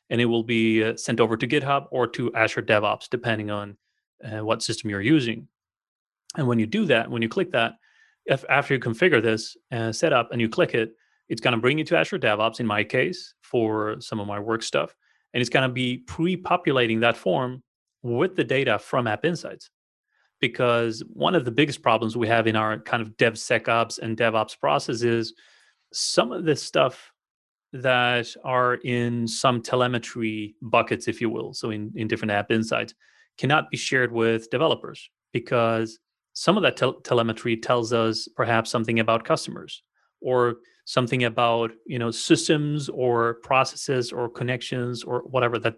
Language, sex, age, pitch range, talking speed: English, male, 30-49, 115-125 Hz, 175 wpm